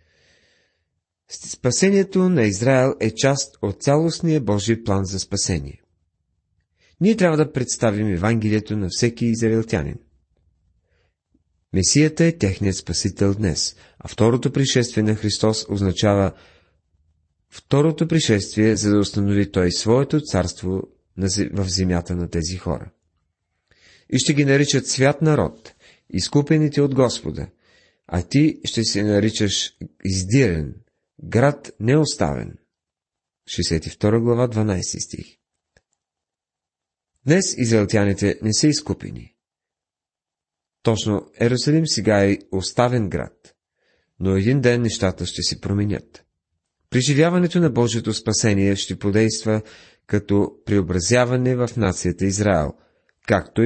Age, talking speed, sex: 40-59, 105 wpm, male